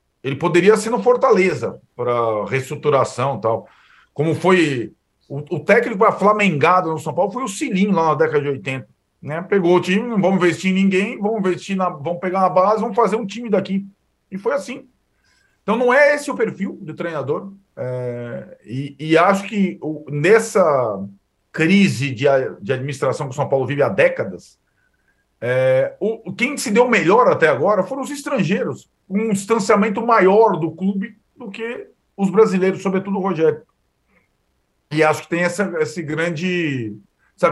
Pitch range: 145-205 Hz